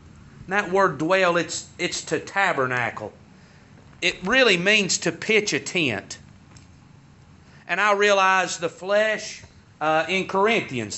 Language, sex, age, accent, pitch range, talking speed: English, male, 40-59, American, 160-210 Hz, 120 wpm